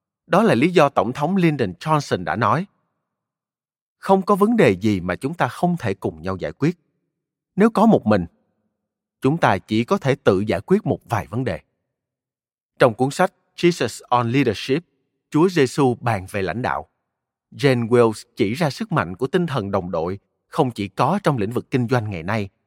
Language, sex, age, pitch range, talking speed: Vietnamese, male, 30-49, 105-155 Hz, 195 wpm